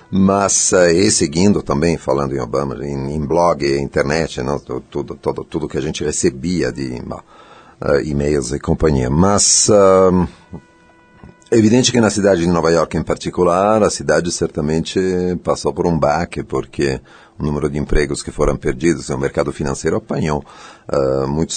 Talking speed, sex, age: 160 wpm, male, 50-69